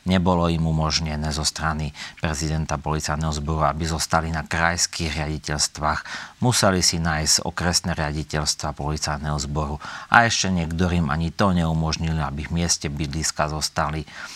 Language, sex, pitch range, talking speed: Slovak, male, 75-85 Hz, 130 wpm